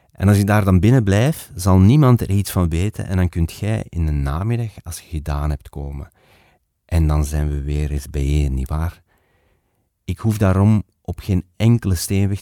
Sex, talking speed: male, 195 wpm